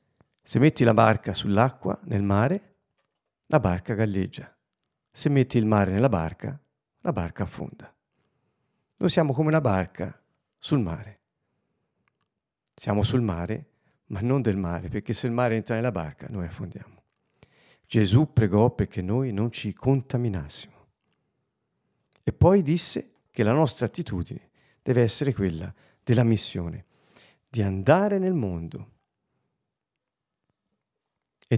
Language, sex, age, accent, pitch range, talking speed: Italian, male, 50-69, native, 100-130 Hz, 125 wpm